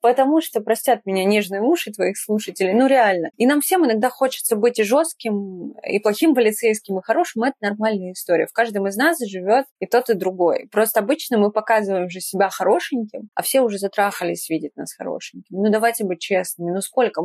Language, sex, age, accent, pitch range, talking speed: Russian, female, 20-39, native, 190-235 Hz, 195 wpm